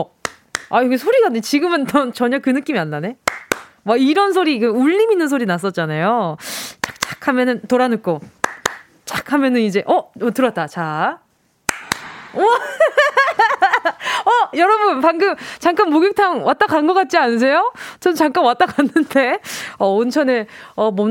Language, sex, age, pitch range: Korean, female, 20-39, 205-315 Hz